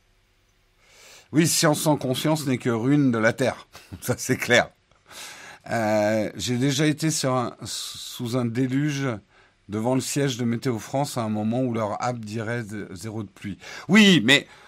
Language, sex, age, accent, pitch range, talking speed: French, male, 50-69, French, 110-160 Hz, 165 wpm